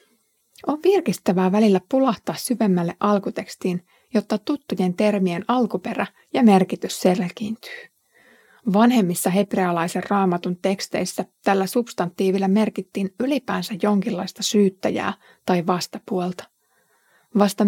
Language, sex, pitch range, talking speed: Finnish, female, 185-225 Hz, 90 wpm